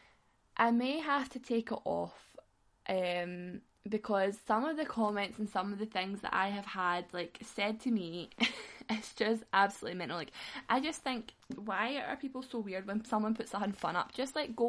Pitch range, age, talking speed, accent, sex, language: 185-240 Hz, 10-29, 195 wpm, British, female, English